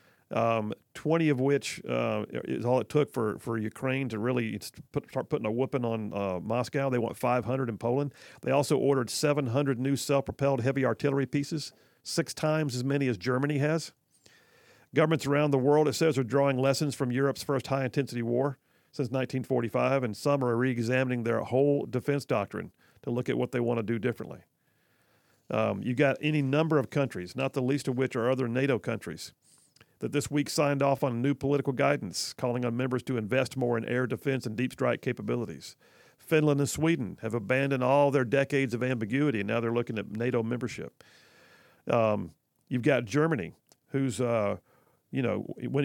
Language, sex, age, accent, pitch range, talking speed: English, male, 50-69, American, 120-145 Hz, 185 wpm